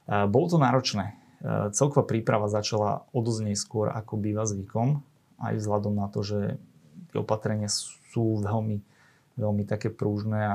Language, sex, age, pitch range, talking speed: Slovak, male, 30-49, 105-135 Hz, 125 wpm